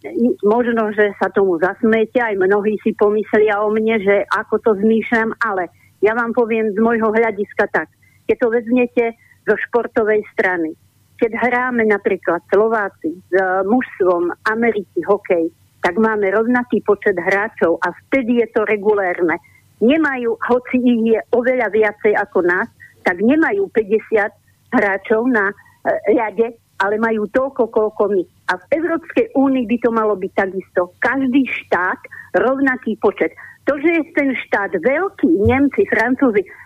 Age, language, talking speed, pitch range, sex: 50-69, Slovak, 145 wpm, 210-250 Hz, female